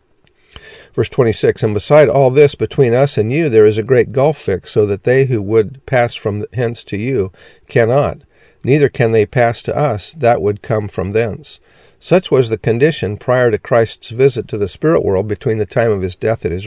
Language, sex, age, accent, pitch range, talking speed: English, male, 50-69, American, 105-135 Hz, 210 wpm